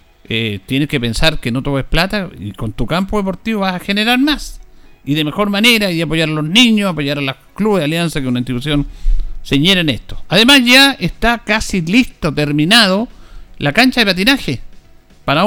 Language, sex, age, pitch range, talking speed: Spanish, male, 50-69, 130-195 Hz, 190 wpm